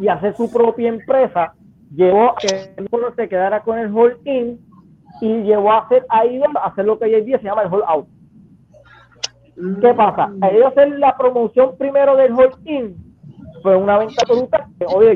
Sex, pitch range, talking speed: male, 195-260 Hz, 180 wpm